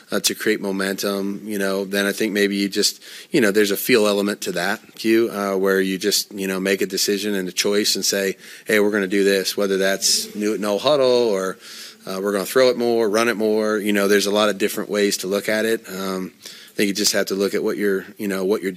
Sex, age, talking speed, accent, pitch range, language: male, 30-49, 270 wpm, American, 95-105 Hz, English